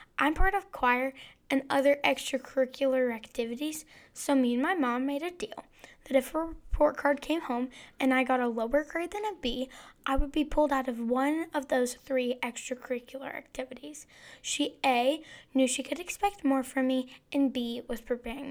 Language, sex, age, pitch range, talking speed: English, female, 10-29, 255-315 Hz, 185 wpm